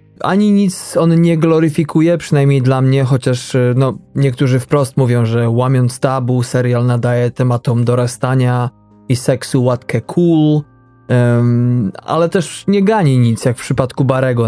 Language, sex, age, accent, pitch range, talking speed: Polish, male, 20-39, native, 120-140 Hz, 140 wpm